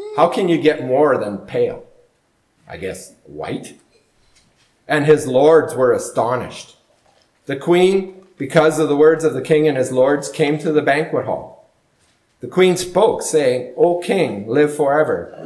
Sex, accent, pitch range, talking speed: male, American, 130-185 Hz, 155 wpm